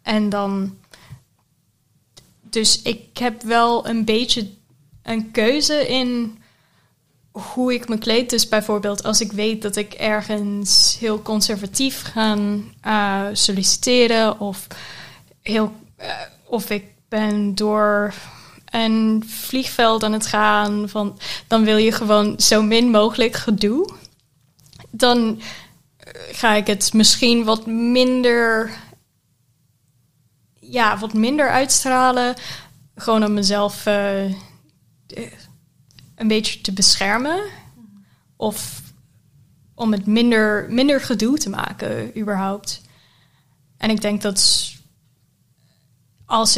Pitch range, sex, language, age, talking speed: 200-225 Hz, female, Dutch, 10-29, 105 wpm